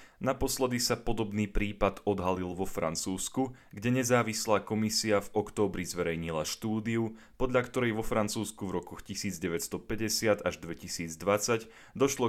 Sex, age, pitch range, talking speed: male, 30-49, 90-110 Hz, 115 wpm